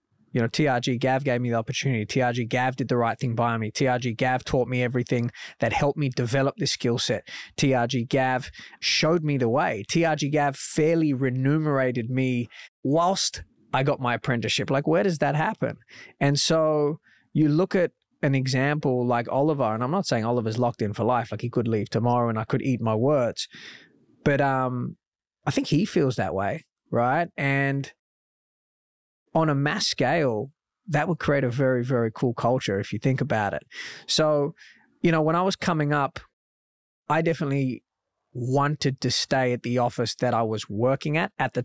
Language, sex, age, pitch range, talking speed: English, male, 20-39, 120-150 Hz, 185 wpm